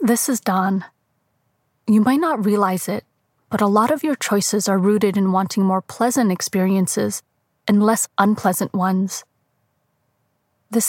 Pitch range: 155-215 Hz